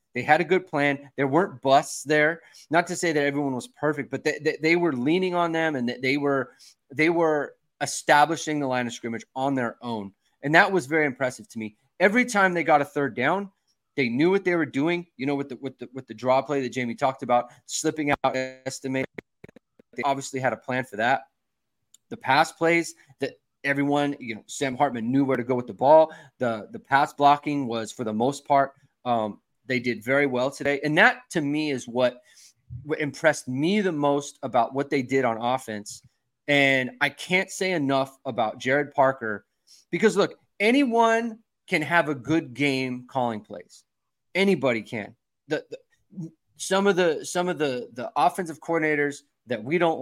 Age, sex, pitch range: 20-39, male, 130-160 Hz